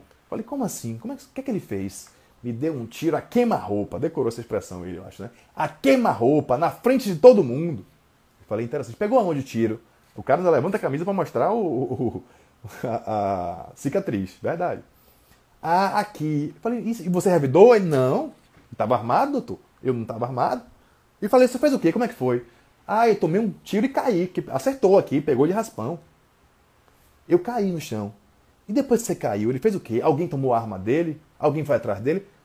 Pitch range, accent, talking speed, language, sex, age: 125-205 Hz, Brazilian, 205 wpm, Portuguese, male, 20-39